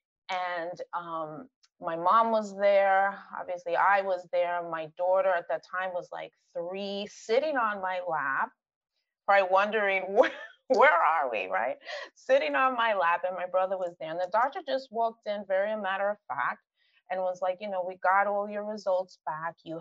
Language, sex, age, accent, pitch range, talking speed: English, female, 30-49, American, 185-255 Hz, 190 wpm